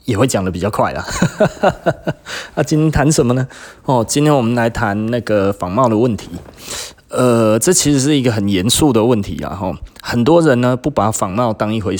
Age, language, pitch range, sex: 20-39, Chinese, 95-125 Hz, male